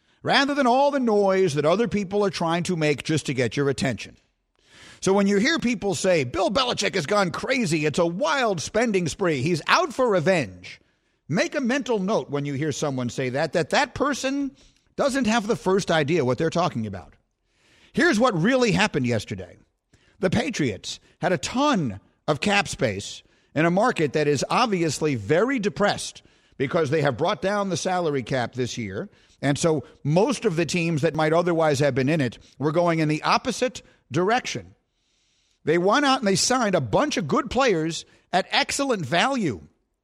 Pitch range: 150-225 Hz